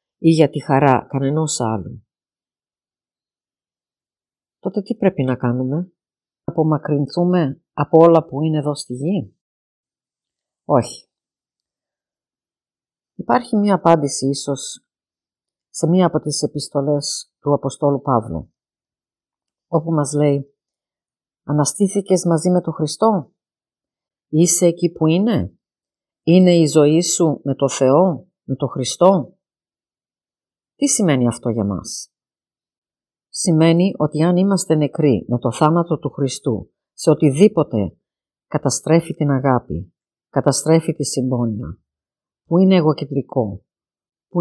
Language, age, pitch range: Greek, 50-69, 130-170 Hz